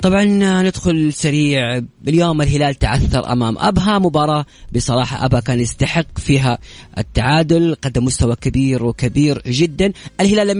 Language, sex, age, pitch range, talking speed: English, female, 30-49, 120-155 Hz, 125 wpm